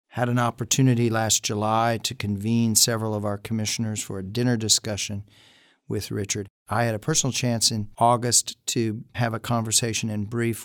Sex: male